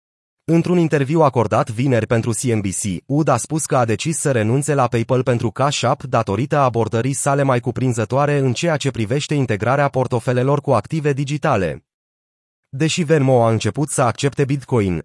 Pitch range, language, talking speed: 120-150 Hz, Romanian, 160 wpm